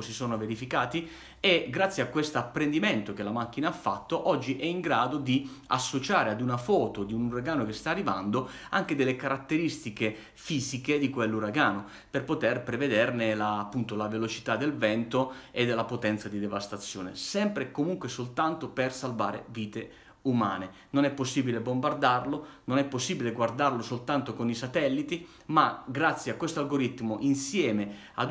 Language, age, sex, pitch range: Italian, 30-49, male, 115-140 Hz